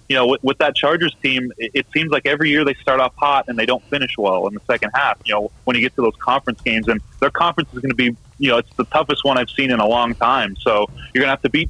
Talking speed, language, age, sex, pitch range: 315 wpm, English, 30-49, male, 115-140 Hz